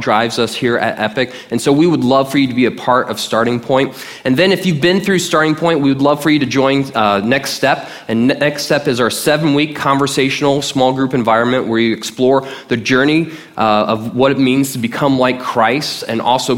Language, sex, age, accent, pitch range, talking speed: English, male, 20-39, American, 115-140 Hz, 230 wpm